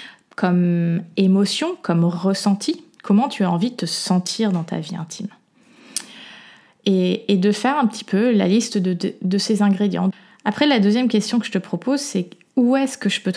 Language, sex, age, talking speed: French, female, 20-39, 195 wpm